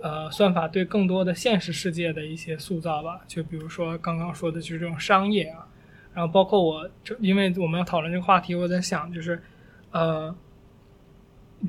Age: 20-39